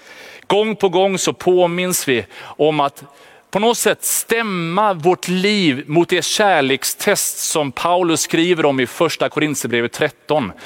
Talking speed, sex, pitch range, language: 140 wpm, male, 150-195 Hz, Swedish